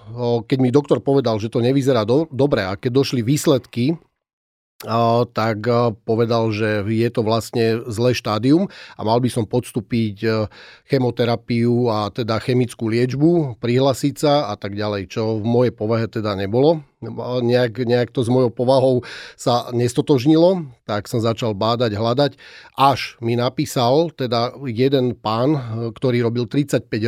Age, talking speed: 40-59, 140 wpm